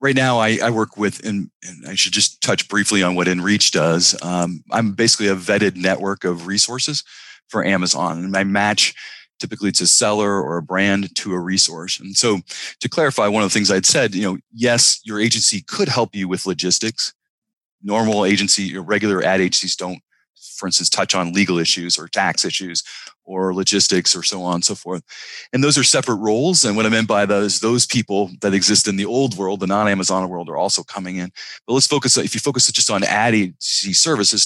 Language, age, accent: English, 30-49, American